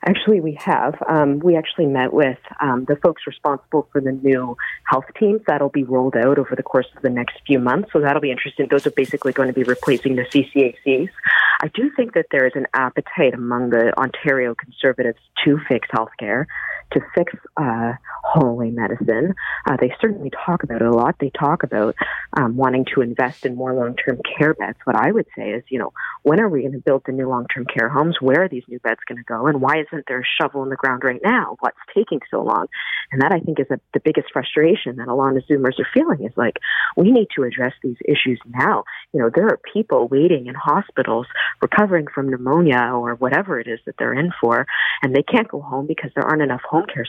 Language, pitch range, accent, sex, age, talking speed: English, 130-155 Hz, American, female, 40-59, 230 wpm